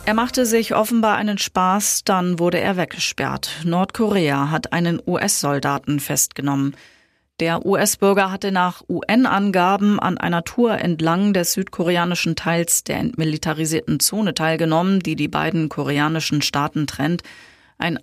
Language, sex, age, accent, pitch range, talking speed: German, female, 30-49, German, 160-190 Hz, 125 wpm